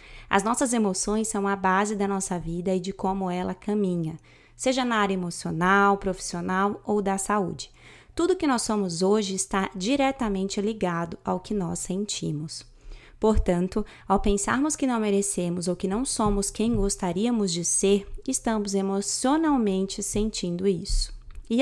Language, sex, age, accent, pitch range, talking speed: Portuguese, female, 20-39, Brazilian, 180-215 Hz, 145 wpm